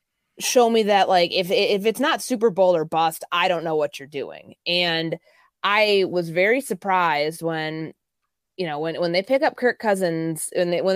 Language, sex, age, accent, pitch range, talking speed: English, female, 20-39, American, 160-200 Hz, 195 wpm